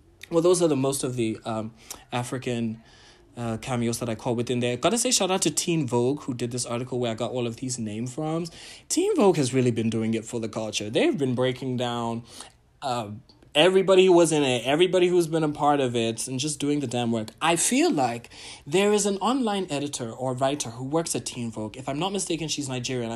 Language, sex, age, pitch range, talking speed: English, male, 20-39, 120-155 Hz, 235 wpm